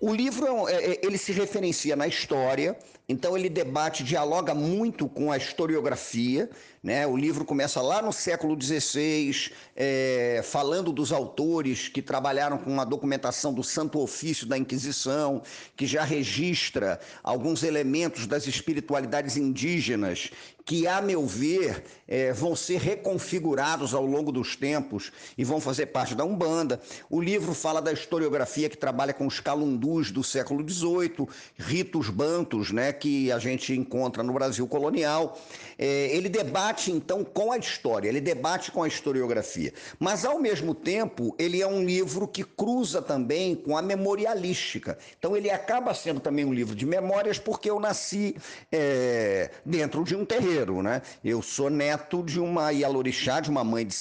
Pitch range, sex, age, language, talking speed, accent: 135-180 Hz, male, 50-69, Portuguese, 150 wpm, Brazilian